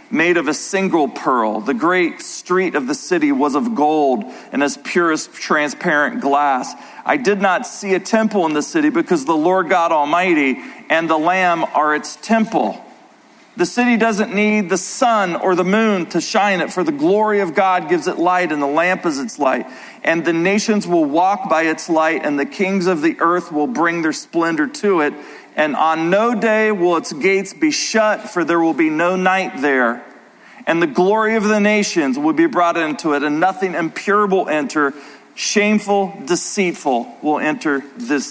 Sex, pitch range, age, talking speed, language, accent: male, 150-210 Hz, 40-59, 190 wpm, English, American